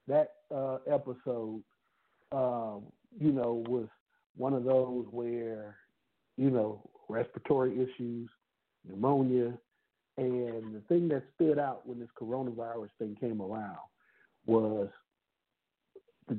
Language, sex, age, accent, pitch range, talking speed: English, male, 60-79, American, 120-155 Hz, 110 wpm